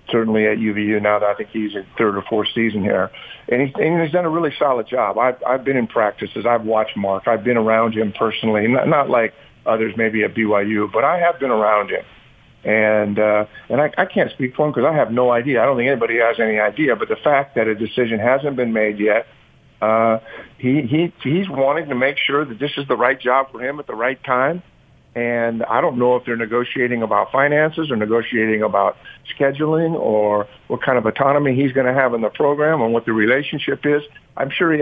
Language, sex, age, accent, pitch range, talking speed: English, male, 50-69, American, 110-140 Hz, 230 wpm